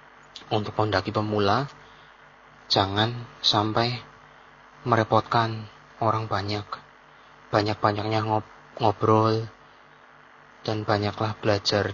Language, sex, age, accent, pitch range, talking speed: Indonesian, male, 30-49, native, 90-115 Hz, 70 wpm